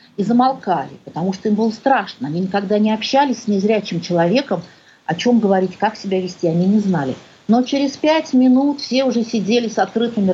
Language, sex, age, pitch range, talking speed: Russian, female, 40-59, 185-240 Hz, 185 wpm